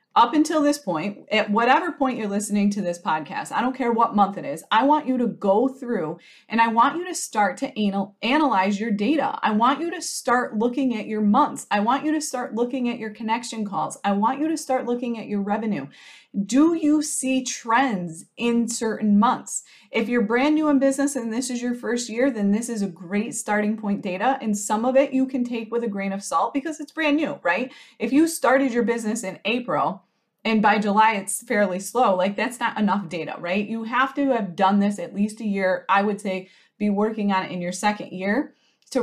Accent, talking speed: American, 230 wpm